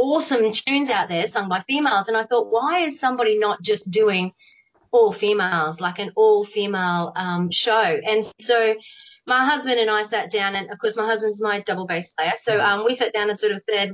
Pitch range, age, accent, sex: 190-240 Hz, 30-49, Australian, female